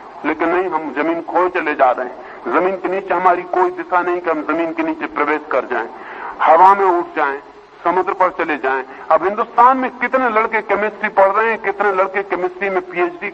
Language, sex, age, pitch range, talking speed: Hindi, male, 50-69, 175-225 Hz, 205 wpm